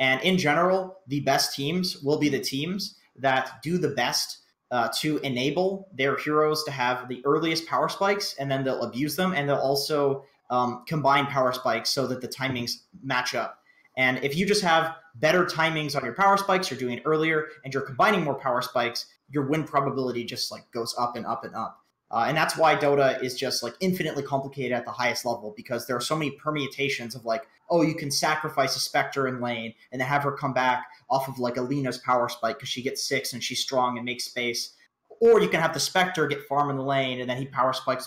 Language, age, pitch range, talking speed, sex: English, 20-39, 125-155 Hz, 225 wpm, male